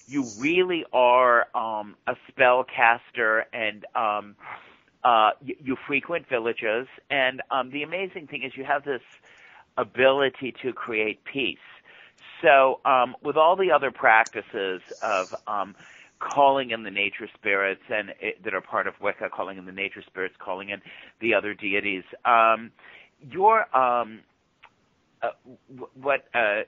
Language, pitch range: English, 105-135 Hz